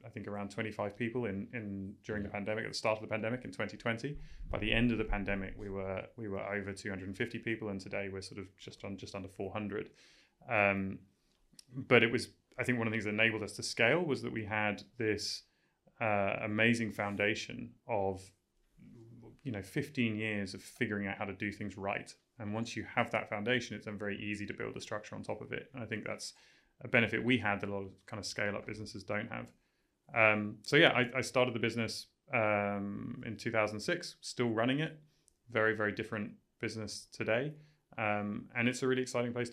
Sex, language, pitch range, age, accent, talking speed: male, English, 105-115 Hz, 30-49, British, 210 wpm